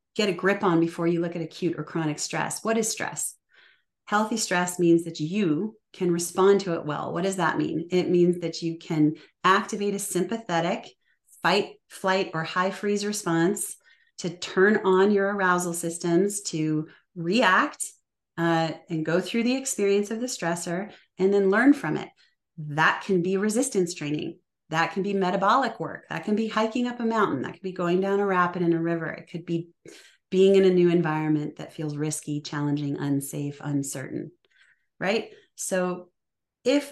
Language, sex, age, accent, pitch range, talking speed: English, female, 30-49, American, 165-200 Hz, 175 wpm